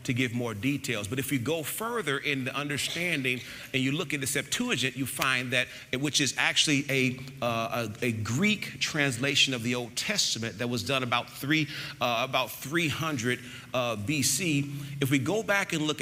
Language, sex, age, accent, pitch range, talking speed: English, male, 40-59, American, 120-145 Hz, 175 wpm